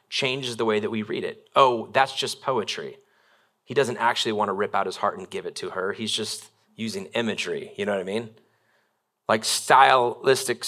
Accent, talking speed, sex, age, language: American, 200 wpm, male, 30-49, English